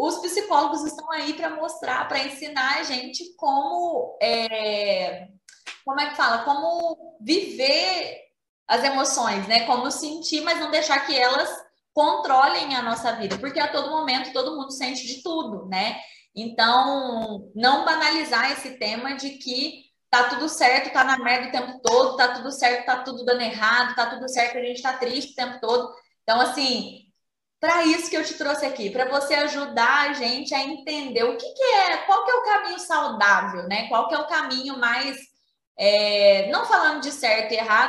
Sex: female